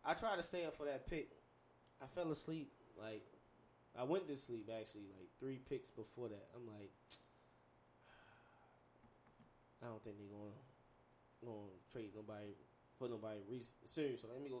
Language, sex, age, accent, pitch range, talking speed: English, male, 20-39, American, 120-150 Hz, 165 wpm